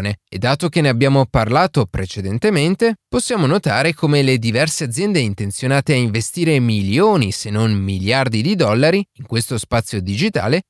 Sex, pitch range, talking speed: male, 115-165 Hz, 145 wpm